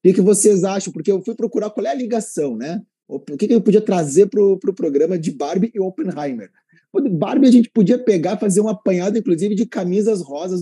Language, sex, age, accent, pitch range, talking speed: Portuguese, male, 20-39, Brazilian, 145-205 Hz, 225 wpm